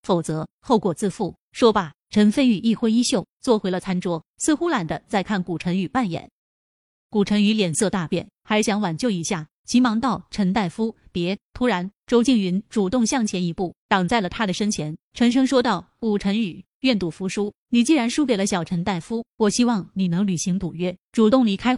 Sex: female